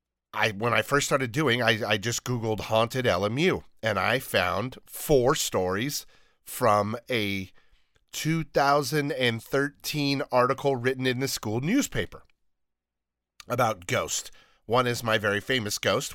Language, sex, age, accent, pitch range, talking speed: English, male, 40-59, American, 105-130 Hz, 125 wpm